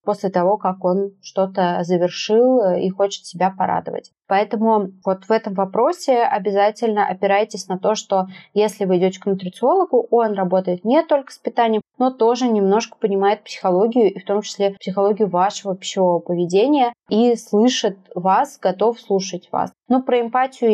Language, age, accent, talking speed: Russian, 20-39, native, 155 wpm